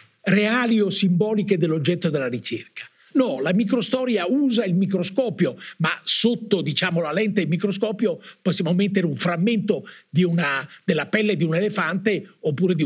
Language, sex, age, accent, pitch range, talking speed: Italian, male, 50-69, native, 165-220 Hz, 150 wpm